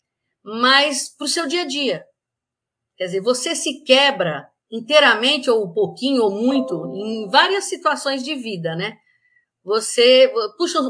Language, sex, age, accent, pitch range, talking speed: Portuguese, female, 50-69, Brazilian, 210-295 Hz, 145 wpm